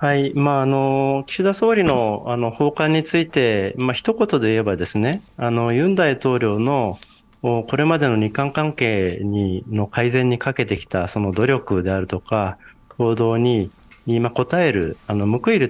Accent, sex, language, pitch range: native, male, Japanese, 100-125 Hz